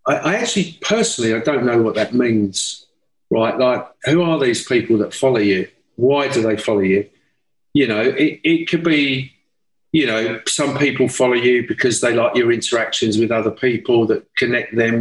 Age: 50-69